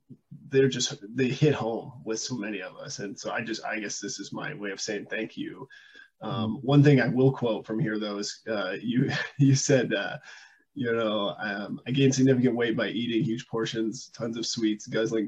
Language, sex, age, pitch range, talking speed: English, male, 20-39, 110-140 Hz, 210 wpm